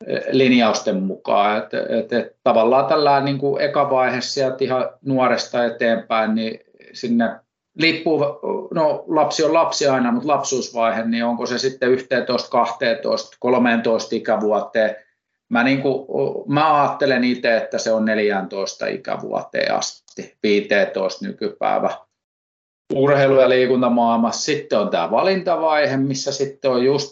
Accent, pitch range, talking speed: native, 115-145 Hz, 125 wpm